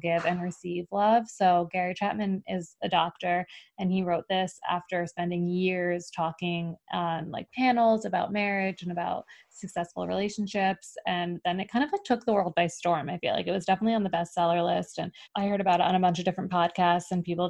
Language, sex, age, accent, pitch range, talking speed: English, female, 20-39, American, 175-200 Hz, 210 wpm